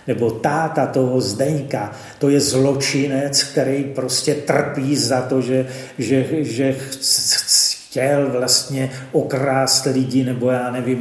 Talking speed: 120 wpm